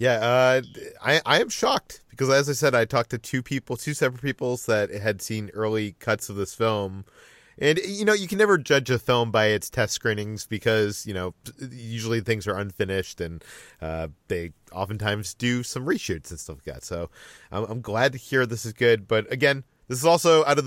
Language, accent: English, American